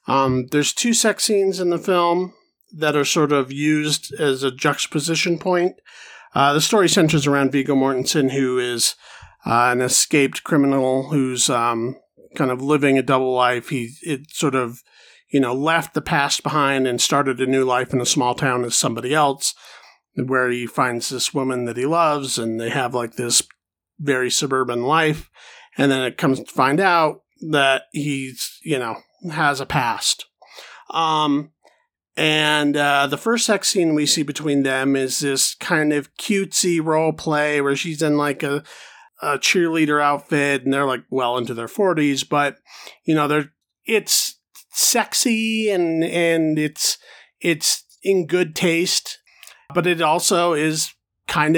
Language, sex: English, male